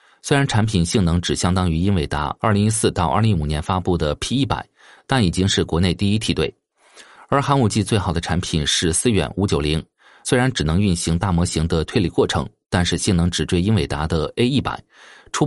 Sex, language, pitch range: male, Chinese, 85-105 Hz